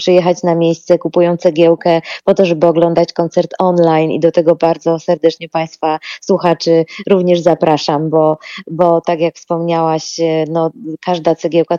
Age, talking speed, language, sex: 20-39, 145 wpm, Polish, female